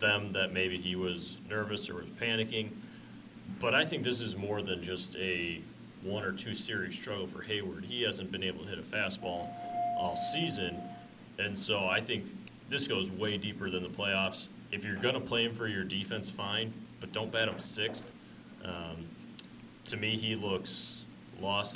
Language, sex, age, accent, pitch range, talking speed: English, male, 30-49, American, 95-110 Hz, 180 wpm